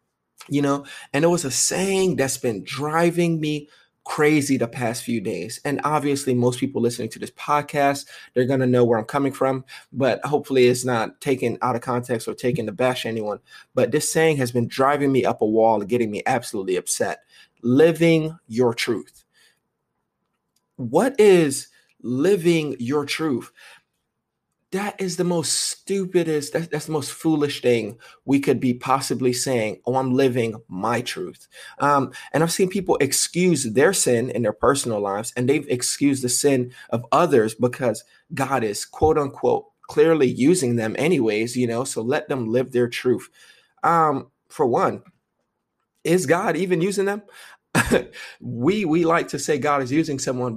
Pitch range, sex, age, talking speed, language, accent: 125-160 Hz, male, 30-49, 165 wpm, English, American